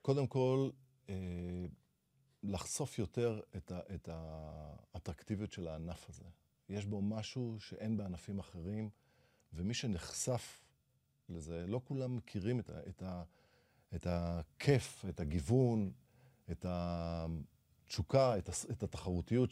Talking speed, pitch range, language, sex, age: 115 wpm, 90-120 Hz, Hebrew, male, 40-59